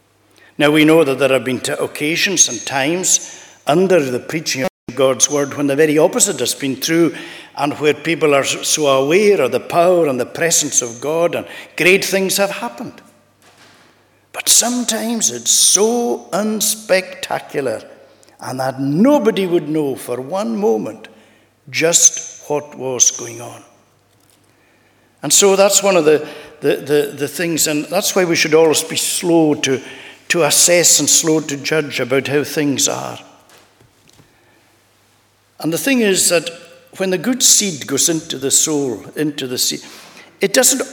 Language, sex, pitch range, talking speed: English, male, 135-190 Hz, 155 wpm